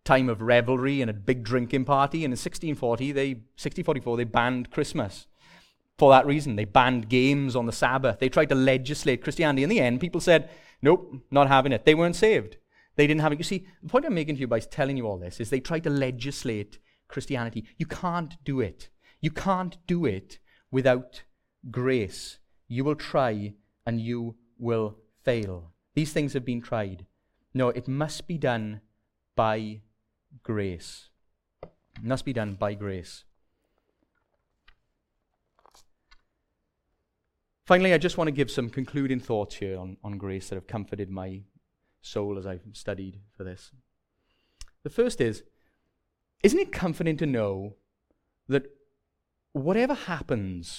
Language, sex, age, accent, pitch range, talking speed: English, male, 30-49, British, 105-145 Hz, 160 wpm